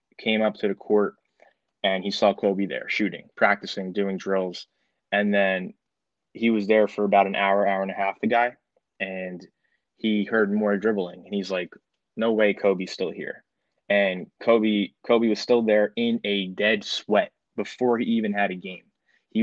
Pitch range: 95-110 Hz